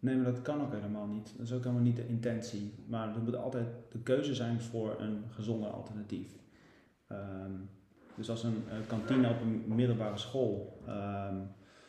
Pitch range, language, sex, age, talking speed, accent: 100-115 Hz, Dutch, male, 40-59, 180 wpm, Dutch